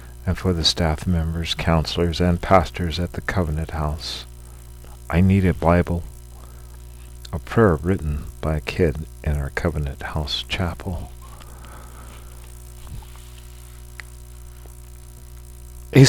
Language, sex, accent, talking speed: English, male, American, 105 wpm